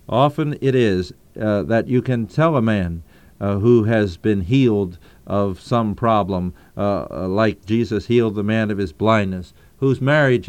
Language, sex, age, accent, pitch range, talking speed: English, male, 50-69, American, 95-120 Hz, 165 wpm